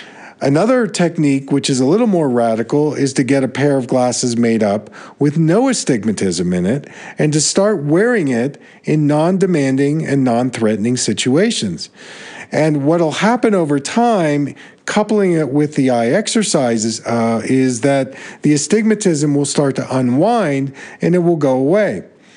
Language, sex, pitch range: English, male, 120-155 Hz